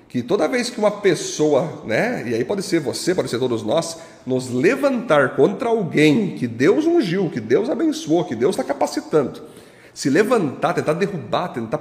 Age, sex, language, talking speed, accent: 30-49, male, Portuguese, 180 wpm, Brazilian